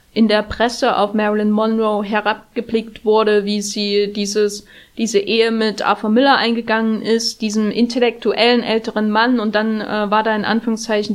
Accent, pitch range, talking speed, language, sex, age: German, 215-240 Hz, 155 wpm, German, female, 20-39